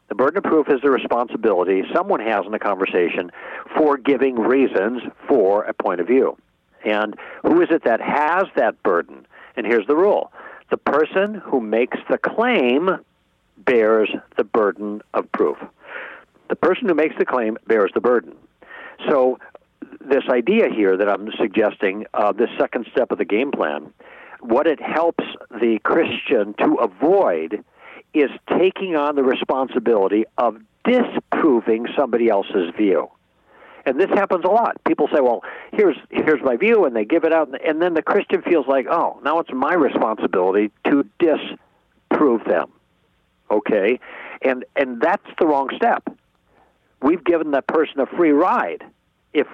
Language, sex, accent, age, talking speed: English, male, American, 60-79, 160 wpm